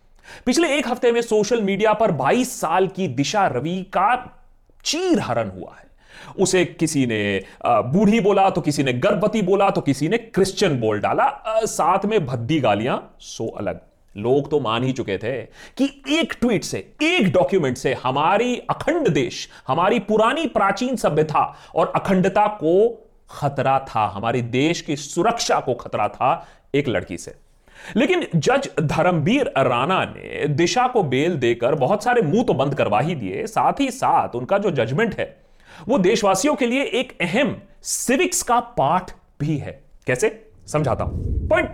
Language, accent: Hindi, native